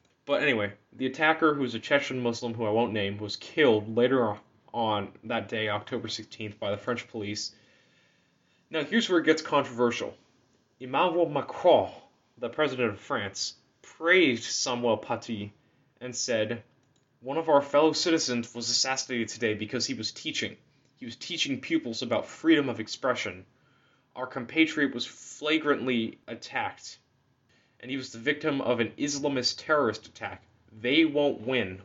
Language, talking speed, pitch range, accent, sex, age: English, 150 wpm, 115-145 Hz, American, male, 20-39